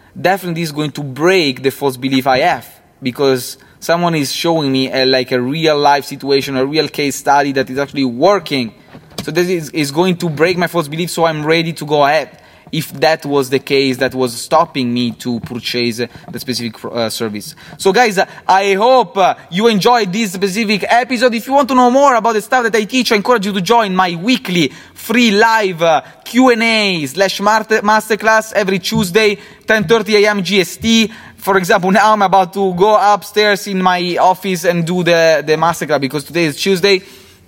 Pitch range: 150-200 Hz